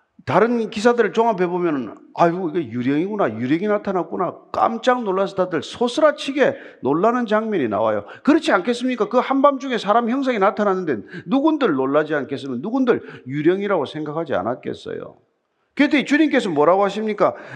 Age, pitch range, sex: 40-59, 180-275 Hz, male